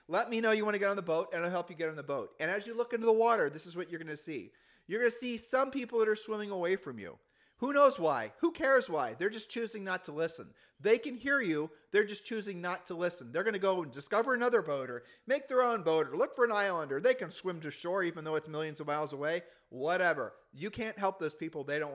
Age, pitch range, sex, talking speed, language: 40-59, 160-215 Hz, male, 285 wpm, English